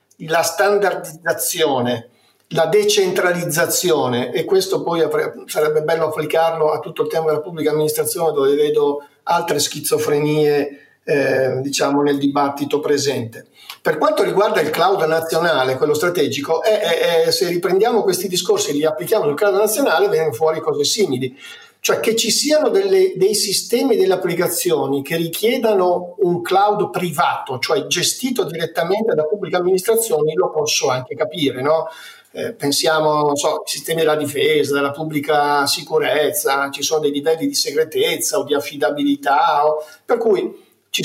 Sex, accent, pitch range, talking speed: male, native, 155-235 Hz, 145 wpm